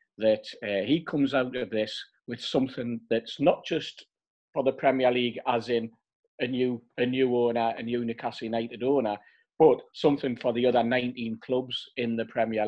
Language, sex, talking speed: English, male, 180 wpm